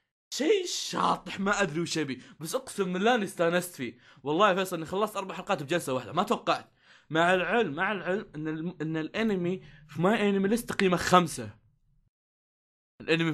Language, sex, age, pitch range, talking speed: Arabic, male, 20-39, 140-185 Hz, 165 wpm